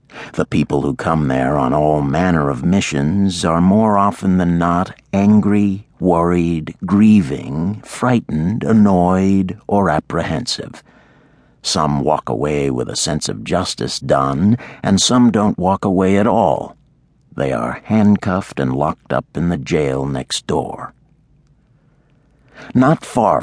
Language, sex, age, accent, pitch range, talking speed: English, male, 50-69, American, 75-100 Hz, 130 wpm